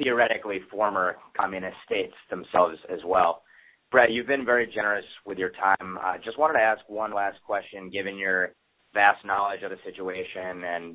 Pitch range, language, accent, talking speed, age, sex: 100-115 Hz, English, American, 175 wpm, 20-39, male